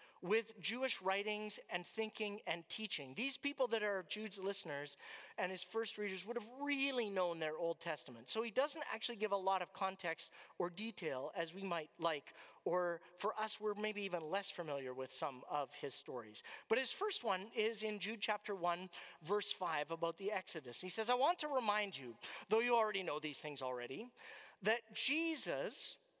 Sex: male